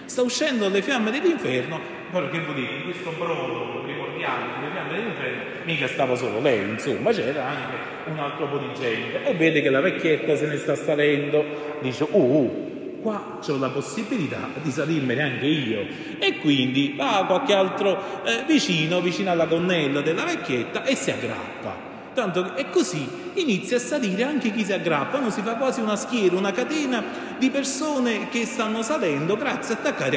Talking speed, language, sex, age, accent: 185 wpm, Italian, male, 30-49, native